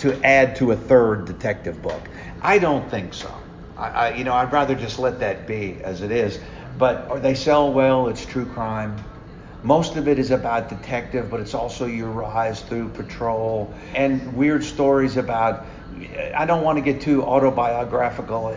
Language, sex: English, male